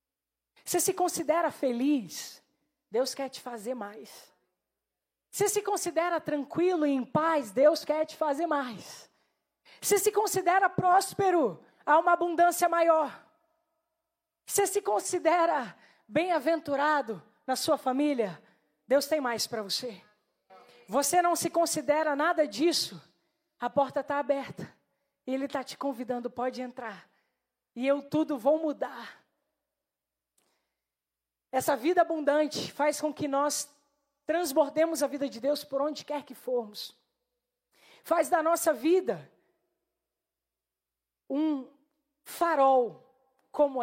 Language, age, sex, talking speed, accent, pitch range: Portuguese, 20-39, female, 120 wpm, Brazilian, 260-325 Hz